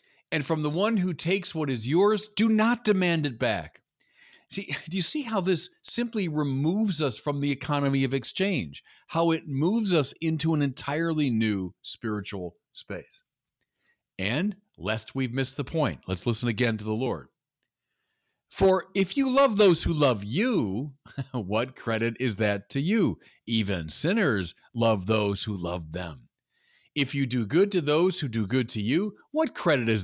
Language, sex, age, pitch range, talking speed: English, male, 50-69, 120-190 Hz, 170 wpm